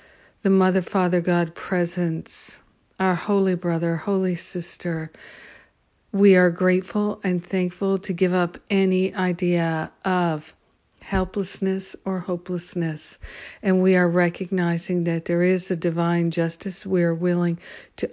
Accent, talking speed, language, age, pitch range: American, 120 wpm, English, 50-69, 170-190 Hz